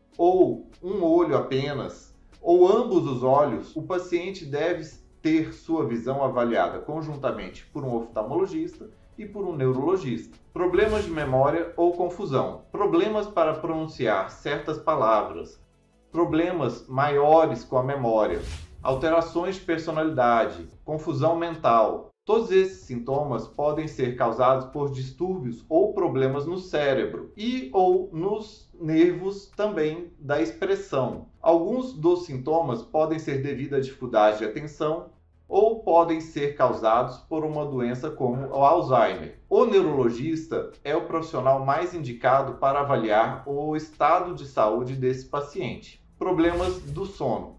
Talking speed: 125 wpm